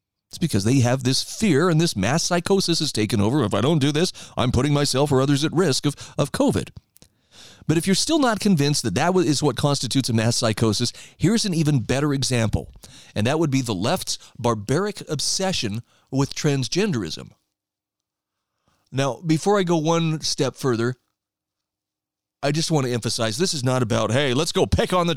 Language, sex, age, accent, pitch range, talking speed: English, male, 30-49, American, 120-160 Hz, 190 wpm